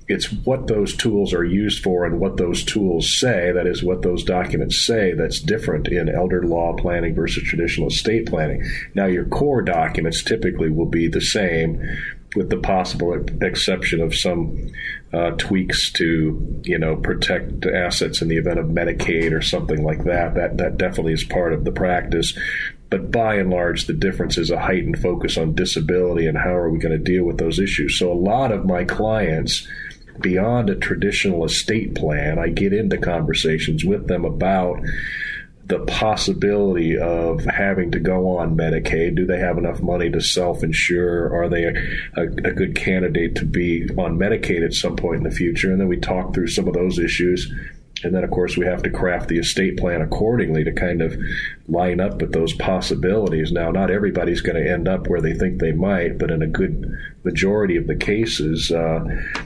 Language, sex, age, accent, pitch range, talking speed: English, male, 40-59, American, 80-90 Hz, 190 wpm